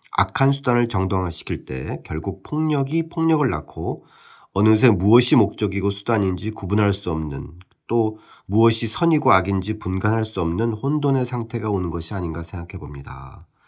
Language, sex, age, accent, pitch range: Korean, male, 40-59, native, 95-135 Hz